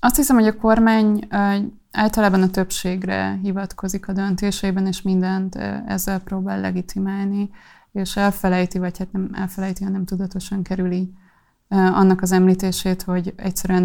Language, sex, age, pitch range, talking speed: Hungarian, female, 20-39, 185-195 Hz, 130 wpm